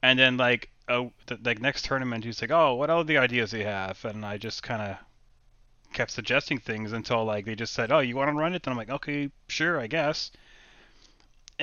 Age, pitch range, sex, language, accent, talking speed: 20-39, 110-130 Hz, male, English, American, 225 wpm